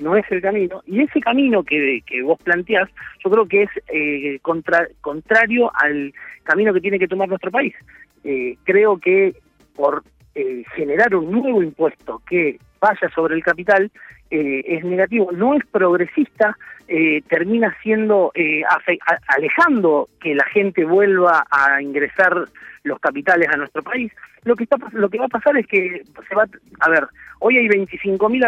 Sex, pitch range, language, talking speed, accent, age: male, 170-245 Hz, Spanish, 175 wpm, Argentinian, 40-59